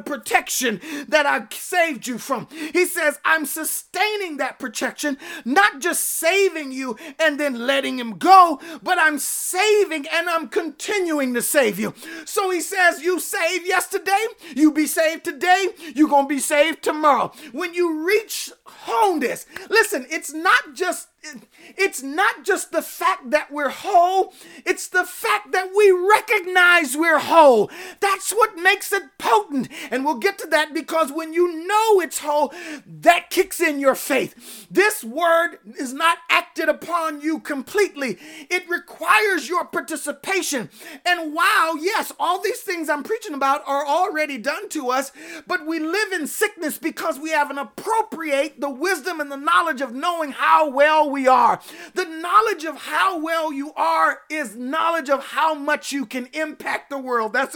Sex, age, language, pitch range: male, 30-49, English, 290-360 Hz